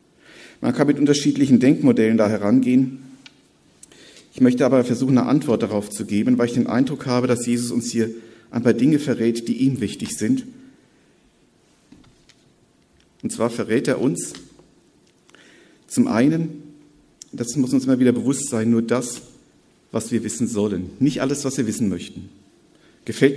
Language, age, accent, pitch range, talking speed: German, 50-69, German, 120-155 Hz, 155 wpm